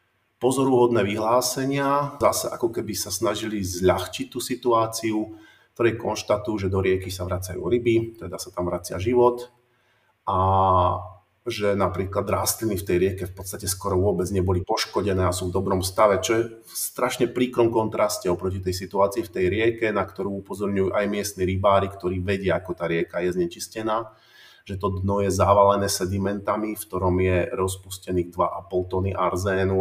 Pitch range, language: 90-110 Hz, Slovak